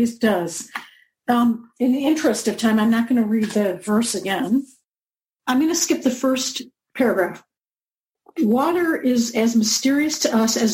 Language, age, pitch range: English, 50-69, 215-260 Hz